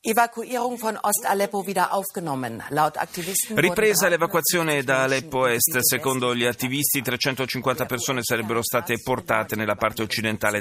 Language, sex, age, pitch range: Italian, male, 40-59, 115-150 Hz